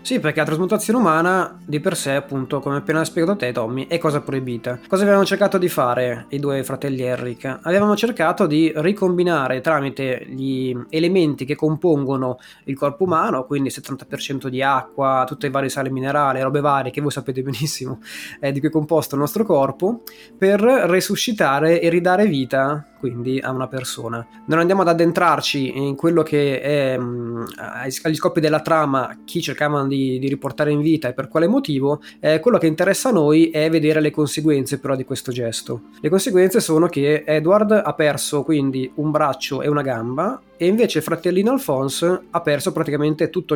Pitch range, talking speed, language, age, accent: 135-165 Hz, 180 wpm, Italian, 20-39, native